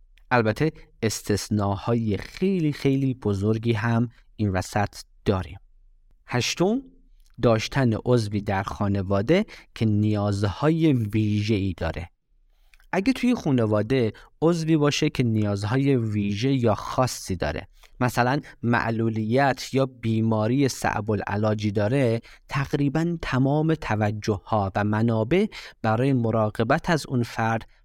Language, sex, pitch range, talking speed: Persian, male, 105-145 Hz, 105 wpm